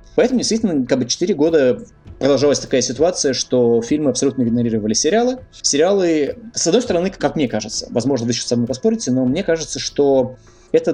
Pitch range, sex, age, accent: 115-145 Hz, male, 20-39, native